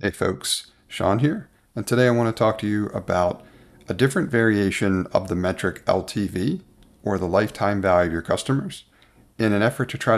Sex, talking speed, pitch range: male, 185 wpm, 95-115 Hz